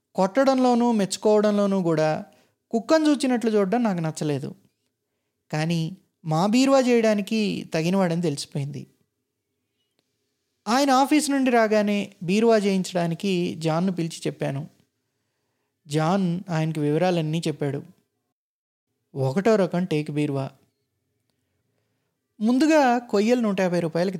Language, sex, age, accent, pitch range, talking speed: Telugu, male, 20-39, native, 145-205 Hz, 90 wpm